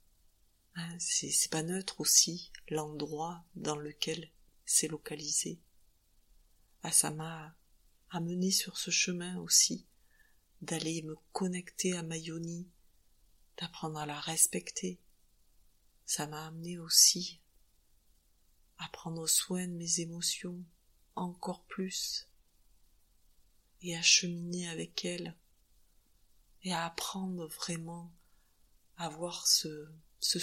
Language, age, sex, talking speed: French, 30-49, female, 100 wpm